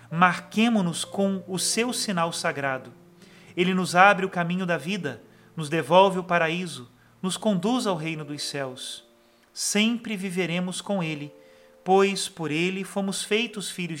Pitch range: 160-200 Hz